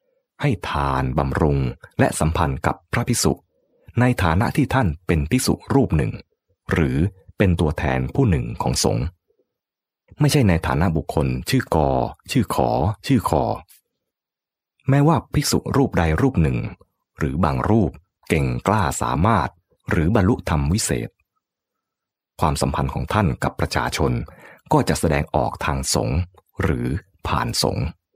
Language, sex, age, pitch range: English, male, 30-49, 75-110 Hz